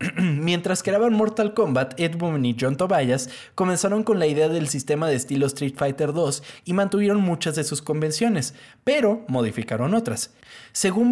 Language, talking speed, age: Spanish, 160 wpm, 20-39